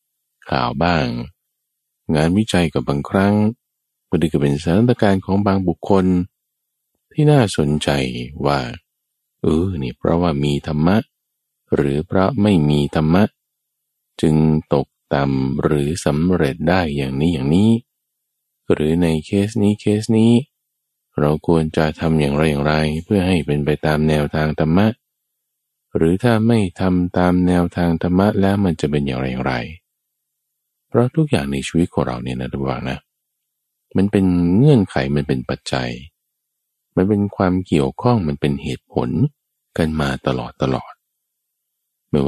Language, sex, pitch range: Thai, male, 70-95 Hz